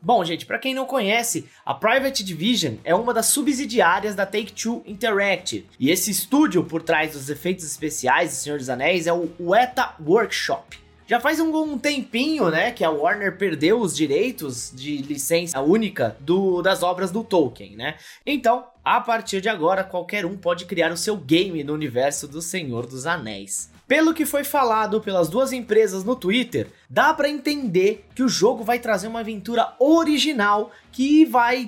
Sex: male